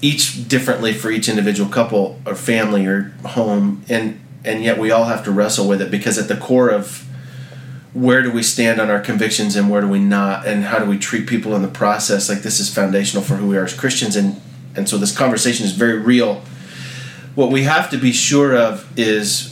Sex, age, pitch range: male, 30-49, 100-130 Hz